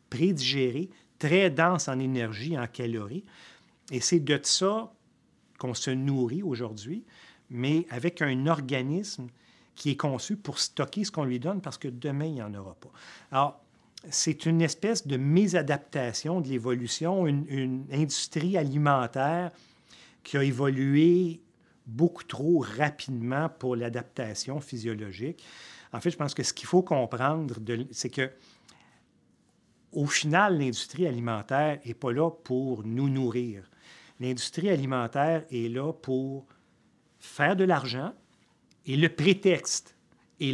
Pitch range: 125-165 Hz